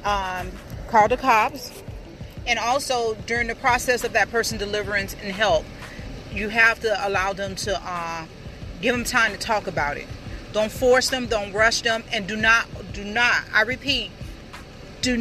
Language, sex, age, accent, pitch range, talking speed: English, female, 40-59, American, 205-260 Hz, 170 wpm